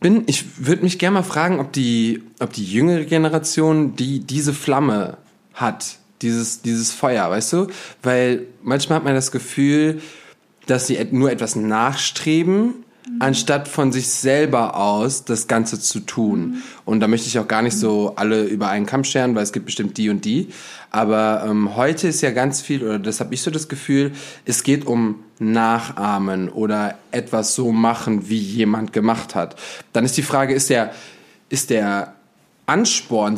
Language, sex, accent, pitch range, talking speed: German, male, German, 115-145 Hz, 175 wpm